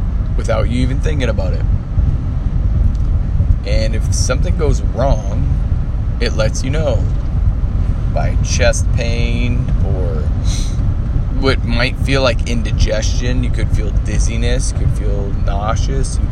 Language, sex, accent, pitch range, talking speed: English, male, American, 85-110 Hz, 120 wpm